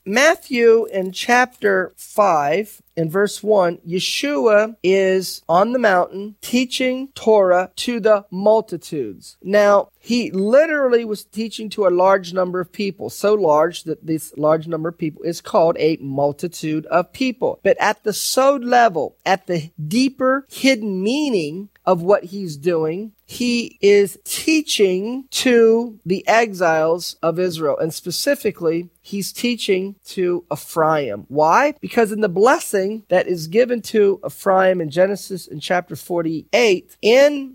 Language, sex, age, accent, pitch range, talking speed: English, male, 40-59, American, 170-220 Hz, 135 wpm